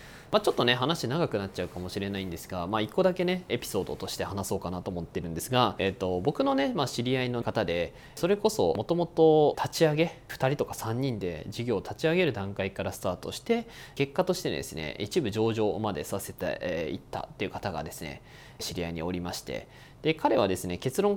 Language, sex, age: Japanese, male, 20-39